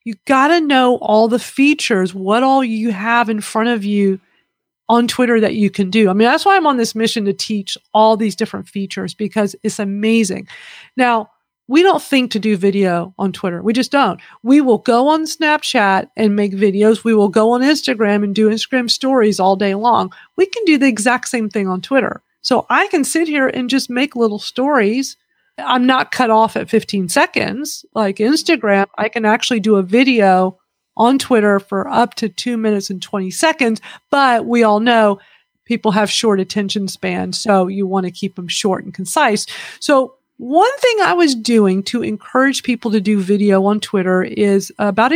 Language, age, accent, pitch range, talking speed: English, 40-59, American, 205-255 Hz, 195 wpm